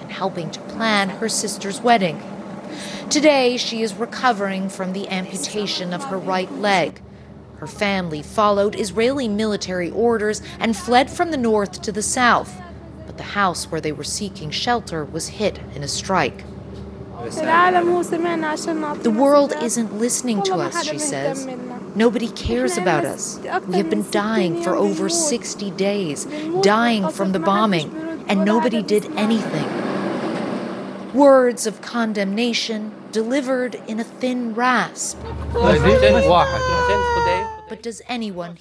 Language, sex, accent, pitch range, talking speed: English, female, American, 185-240 Hz, 130 wpm